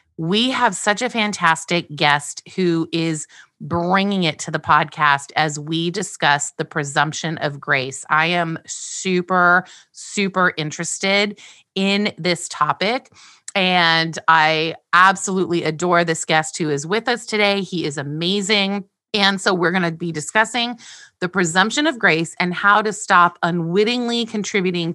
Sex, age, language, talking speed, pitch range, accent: female, 30-49, English, 140 wpm, 160-200 Hz, American